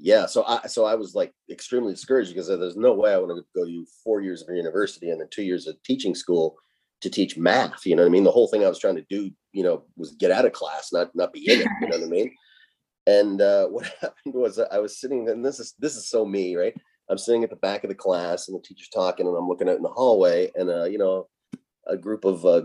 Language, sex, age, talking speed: English, male, 30-49, 280 wpm